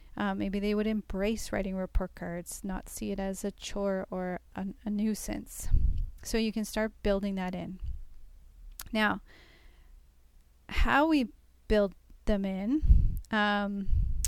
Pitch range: 190-215 Hz